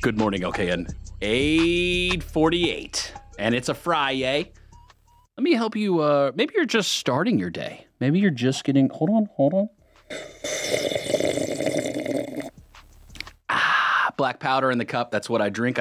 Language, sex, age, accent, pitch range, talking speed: English, male, 30-49, American, 125-200 Hz, 145 wpm